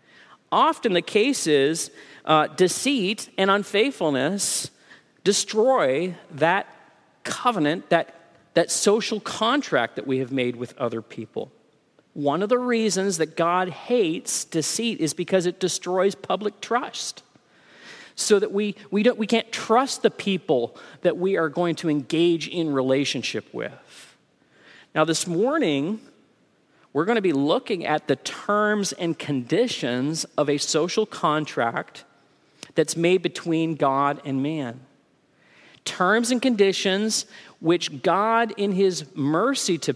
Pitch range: 140-200 Hz